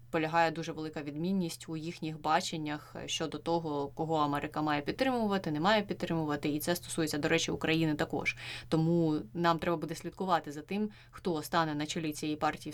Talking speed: 170 wpm